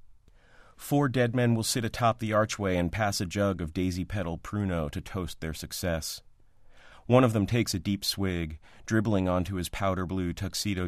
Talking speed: 170 wpm